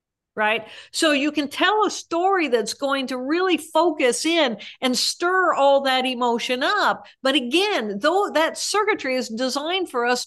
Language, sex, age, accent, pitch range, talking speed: English, female, 50-69, American, 260-340 Hz, 165 wpm